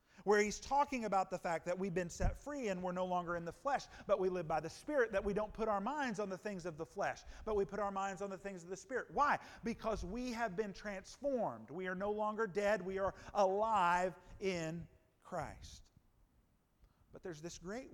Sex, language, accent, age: male, English, American, 40-59